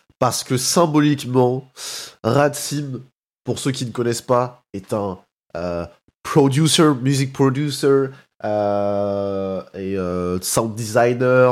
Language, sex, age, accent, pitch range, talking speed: French, male, 20-39, French, 105-140 Hz, 115 wpm